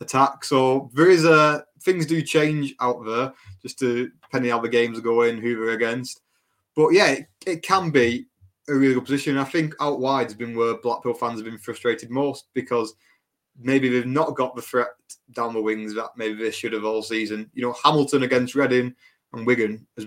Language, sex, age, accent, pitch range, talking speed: English, male, 20-39, British, 115-135 Hz, 205 wpm